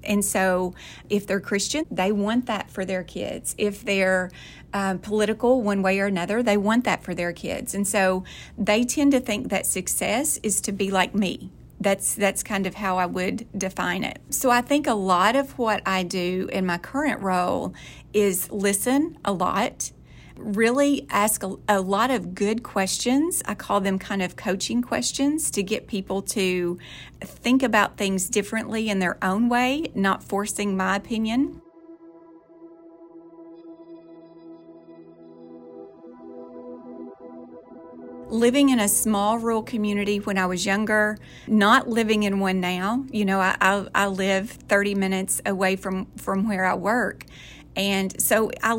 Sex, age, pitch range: female, 40-59, 190-230 Hz